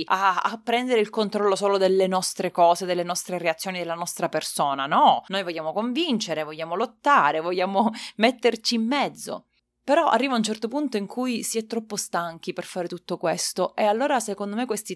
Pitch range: 180-235 Hz